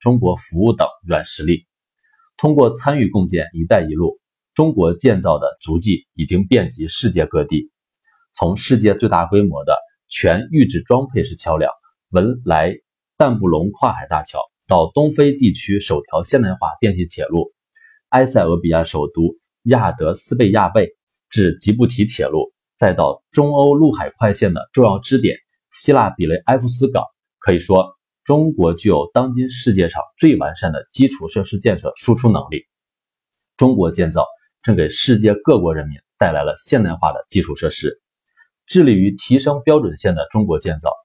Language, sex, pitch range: Chinese, male, 95-145 Hz